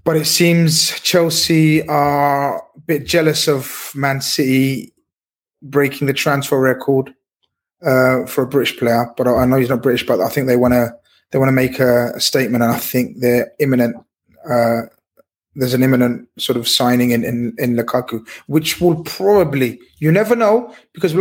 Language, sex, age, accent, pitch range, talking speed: English, male, 20-39, British, 130-165 Hz, 175 wpm